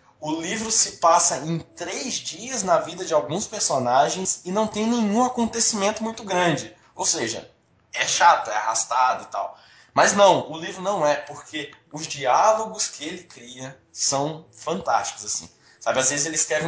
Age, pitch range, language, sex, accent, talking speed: 20-39, 145-200 Hz, Portuguese, male, Brazilian, 170 wpm